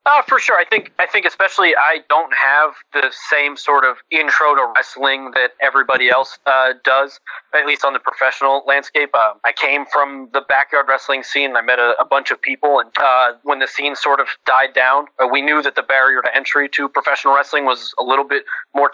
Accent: American